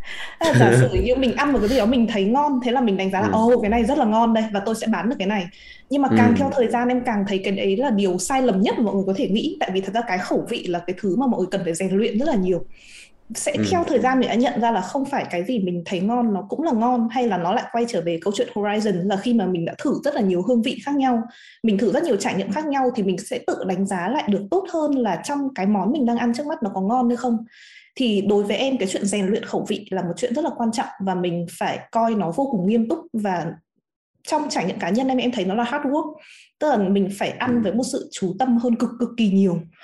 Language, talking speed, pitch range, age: Vietnamese, 305 wpm, 195-260 Hz, 20-39